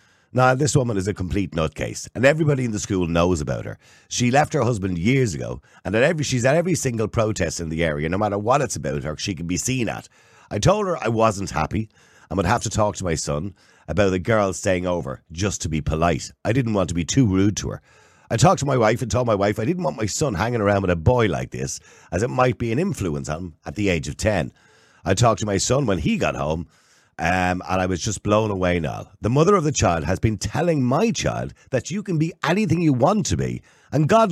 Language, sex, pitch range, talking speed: English, male, 90-130 Hz, 255 wpm